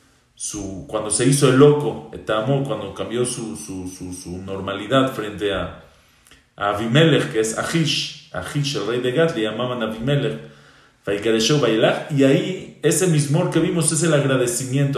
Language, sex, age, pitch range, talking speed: English, male, 40-59, 115-145 Hz, 150 wpm